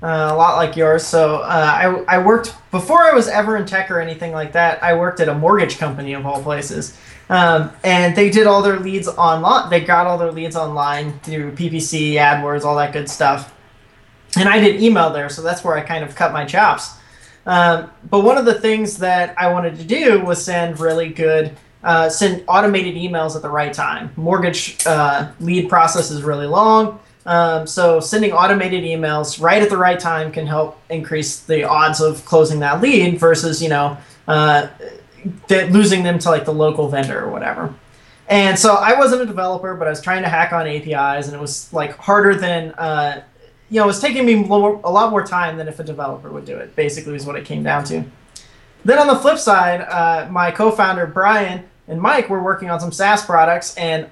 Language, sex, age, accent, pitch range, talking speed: English, male, 20-39, American, 155-190 Hz, 210 wpm